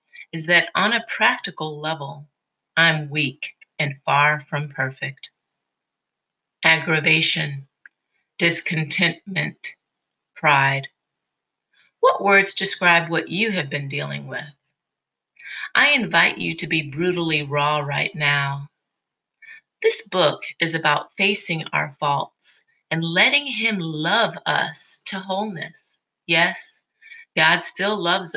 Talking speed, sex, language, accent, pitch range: 110 wpm, female, English, American, 150-195 Hz